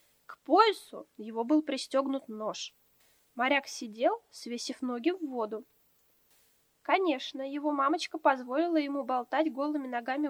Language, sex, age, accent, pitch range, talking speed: Russian, female, 20-39, native, 245-310 Hz, 110 wpm